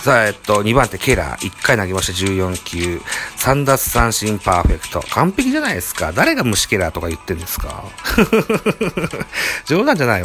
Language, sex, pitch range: Japanese, male, 95-130 Hz